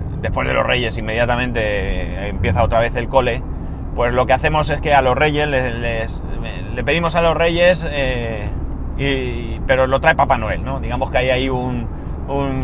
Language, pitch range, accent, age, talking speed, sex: Spanish, 95-130 Hz, Spanish, 30-49, 180 wpm, male